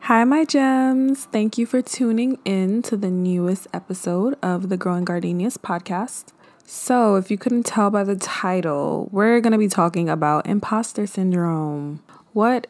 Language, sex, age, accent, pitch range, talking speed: English, female, 20-39, American, 165-200 Hz, 160 wpm